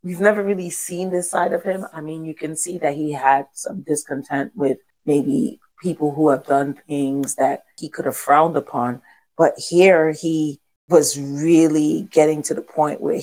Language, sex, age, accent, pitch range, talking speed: English, female, 40-59, American, 145-170 Hz, 185 wpm